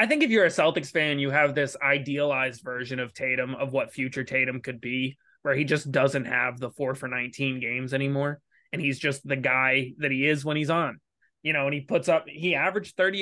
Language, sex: English, male